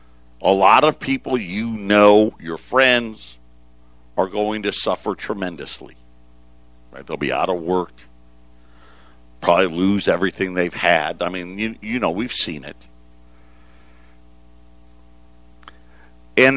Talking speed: 120 wpm